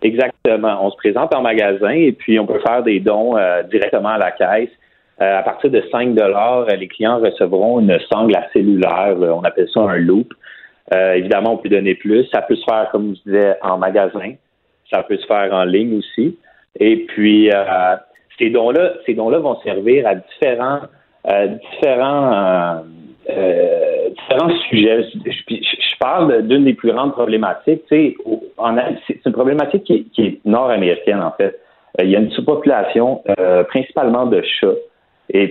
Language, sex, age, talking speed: French, male, 30-49, 170 wpm